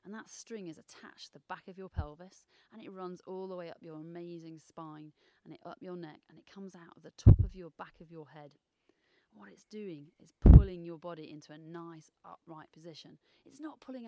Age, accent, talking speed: 30-49, British, 230 wpm